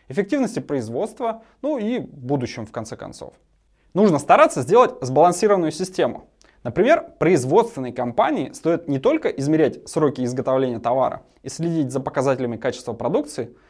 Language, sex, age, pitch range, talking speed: Russian, male, 20-39, 135-205 Hz, 125 wpm